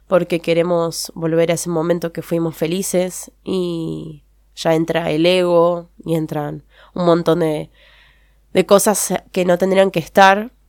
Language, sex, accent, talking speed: Spanish, female, Argentinian, 145 wpm